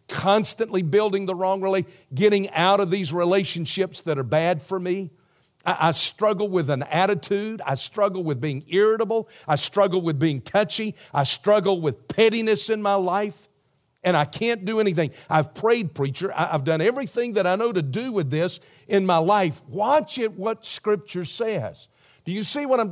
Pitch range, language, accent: 150-210 Hz, English, American